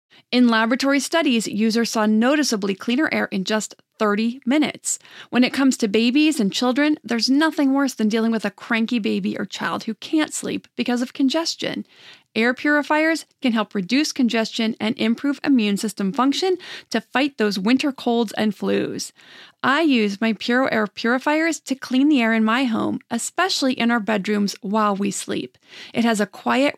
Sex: female